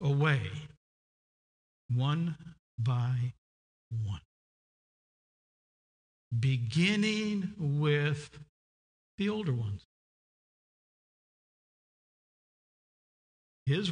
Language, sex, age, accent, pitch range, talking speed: English, male, 50-69, American, 100-150 Hz, 45 wpm